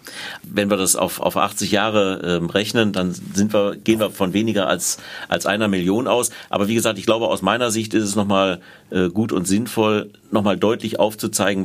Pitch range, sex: 90-105 Hz, male